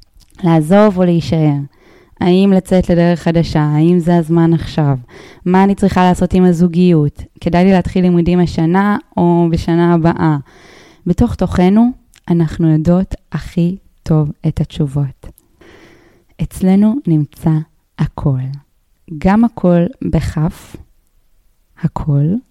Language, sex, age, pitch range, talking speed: Hebrew, female, 20-39, 155-180 Hz, 105 wpm